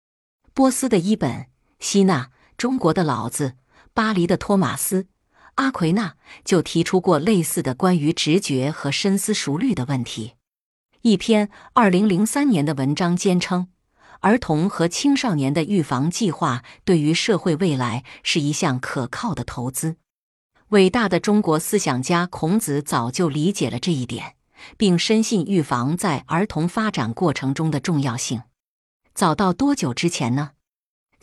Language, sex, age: Chinese, female, 50-69